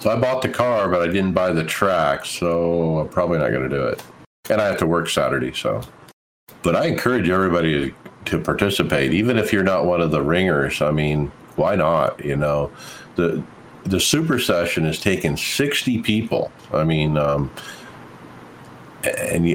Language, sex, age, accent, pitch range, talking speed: English, male, 50-69, American, 80-105 Hz, 180 wpm